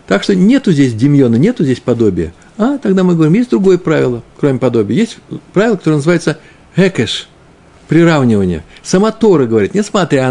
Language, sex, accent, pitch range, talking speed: Russian, male, native, 125-180 Hz, 155 wpm